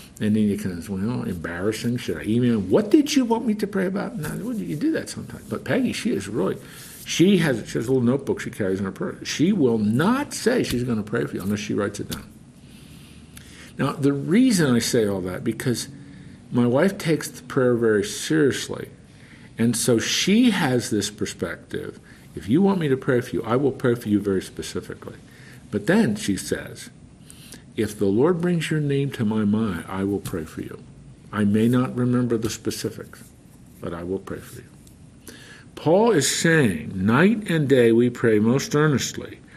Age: 50-69